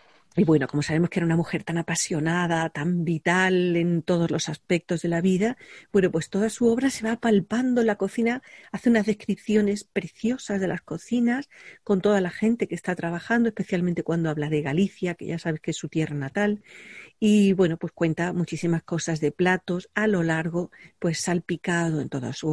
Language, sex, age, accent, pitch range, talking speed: Spanish, female, 40-59, Spanish, 165-215 Hz, 195 wpm